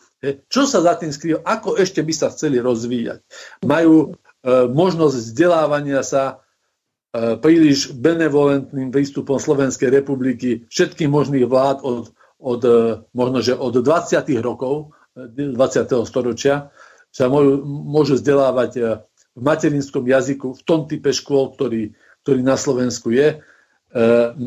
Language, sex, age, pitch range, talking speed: Slovak, male, 50-69, 125-155 Hz, 130 wpm